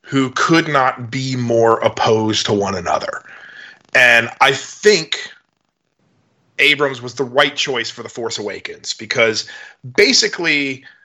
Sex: male